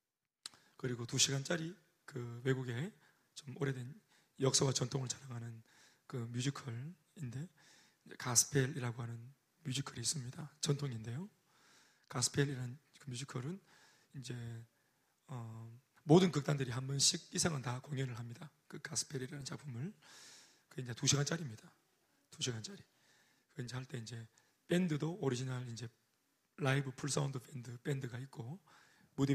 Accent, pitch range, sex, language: native, 125-150 Hz, male, Korean